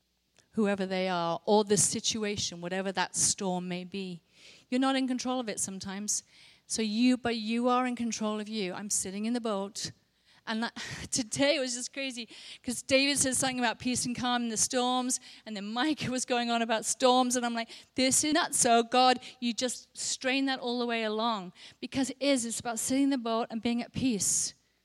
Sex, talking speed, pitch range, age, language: female, 210 wpm, 195-255 Hz, 40-59, English